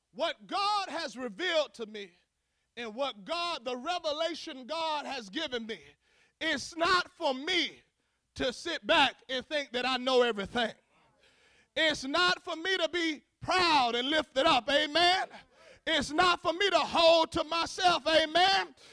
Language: English